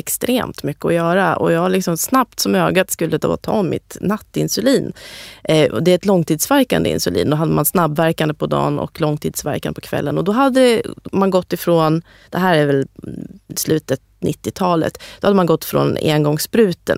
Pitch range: 155-210 Hz